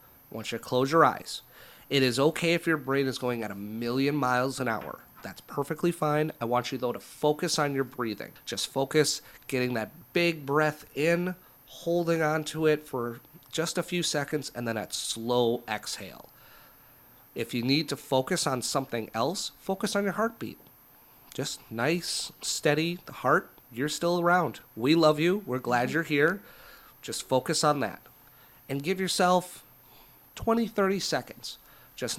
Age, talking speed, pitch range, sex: 30-49, 170 wpm, 115-155 Hz, male